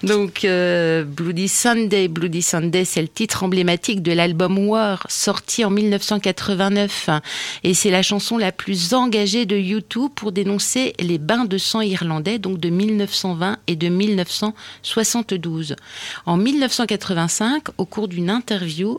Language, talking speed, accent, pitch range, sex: English, 140 wpm, French, 175-220 Hz, female